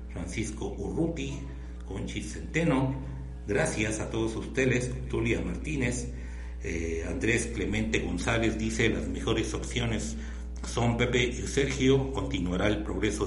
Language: Spanish